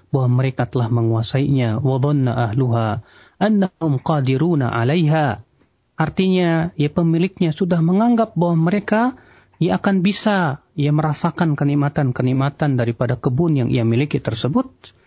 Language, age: Malay, 40-59